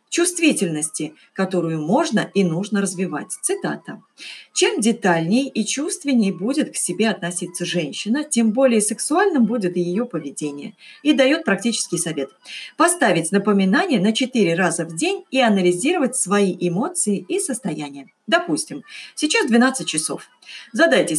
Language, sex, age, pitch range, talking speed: Russian, female, 40-59, 175-285 Hz, 125 wpm